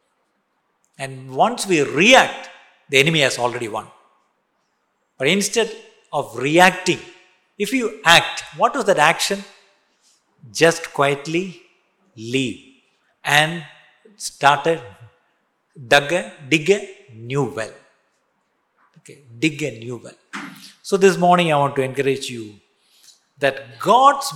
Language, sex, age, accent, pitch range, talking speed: Malayalam, male, 50-69, native, 140-205 Hz, 115 wpm